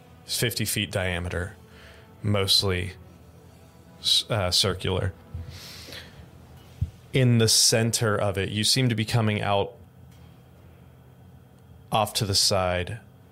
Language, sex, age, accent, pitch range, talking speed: English, male, 20-39, American, 90-110 Hz, 95 wpm